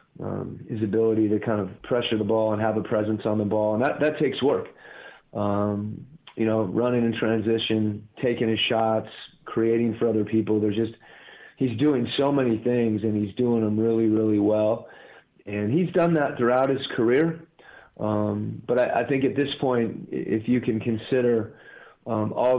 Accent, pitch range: American, 110-120 Hz